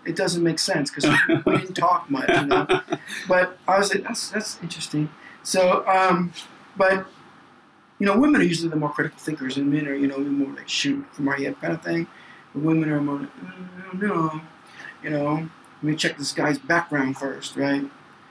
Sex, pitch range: male, 140-170 Hz